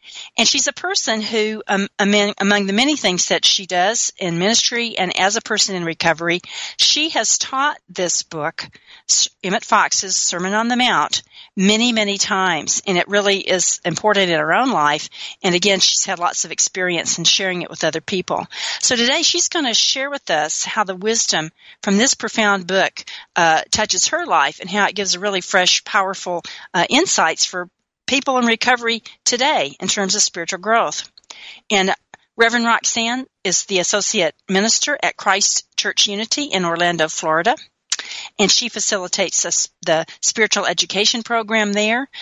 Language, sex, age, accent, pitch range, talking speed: English, female, 40-59, American, 180-230 Hz, 170 wpm